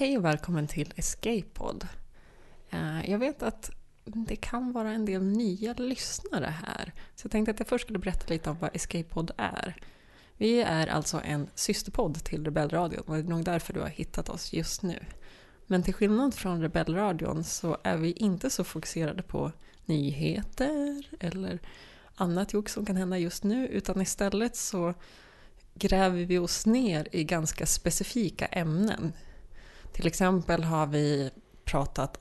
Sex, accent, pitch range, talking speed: female, native, 150-205 Hz, 160 wpm